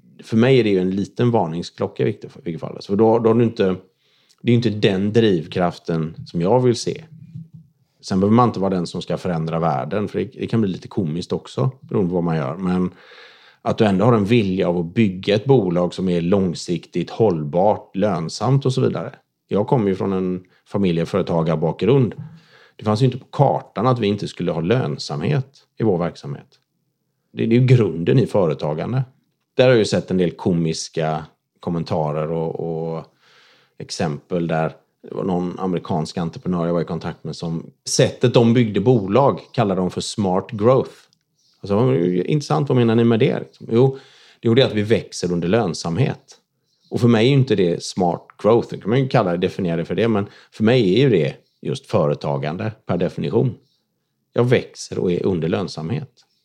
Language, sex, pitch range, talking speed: Swedish, male, 90-125 Hz, 190 wpm